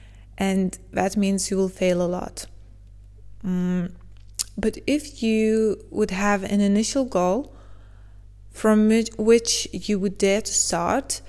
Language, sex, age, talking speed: English, female, 20-39, 130 wpm